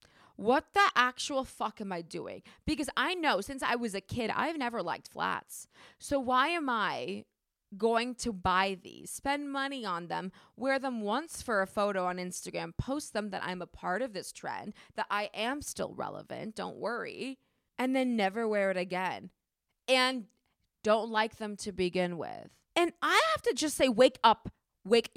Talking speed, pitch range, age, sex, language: 185 wpm, 205-280 Hz, 20-39, female, English